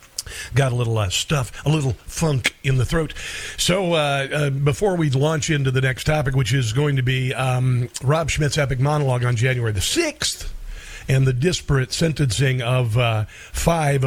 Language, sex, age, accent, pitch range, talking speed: English, male, 50-69, American, 125-150 Hz, 180 wpm